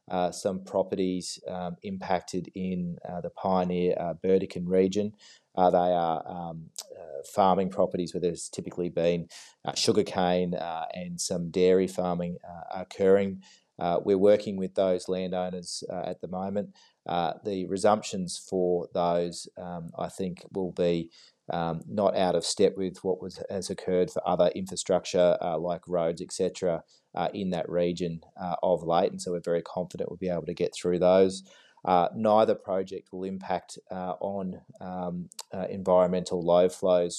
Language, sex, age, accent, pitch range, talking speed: English, male, 30-49, Australian, 90-95 Hz, 165 wpm